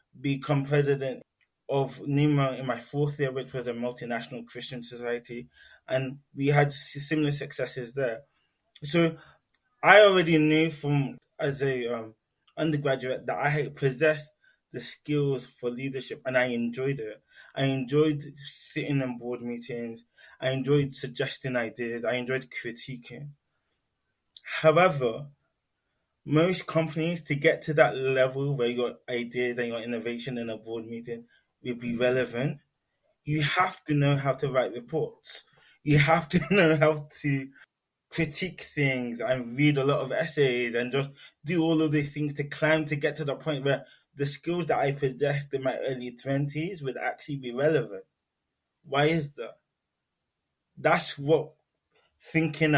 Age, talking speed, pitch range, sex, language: 20-39, 150 wpm, 125-150 Hz, male, English